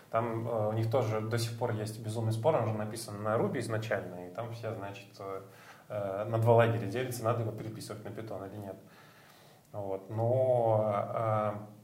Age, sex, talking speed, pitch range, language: 20-39, male, 185 wpm, 110-125 Hz, Russian